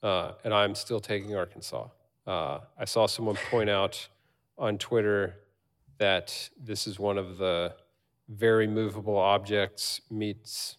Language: English